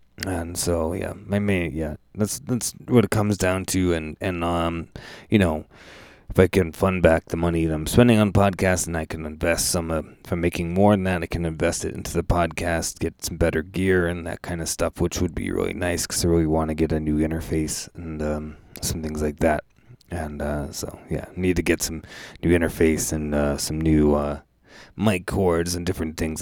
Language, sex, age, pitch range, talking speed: English, male, 20-39, 80-95 Hz, 225 wpm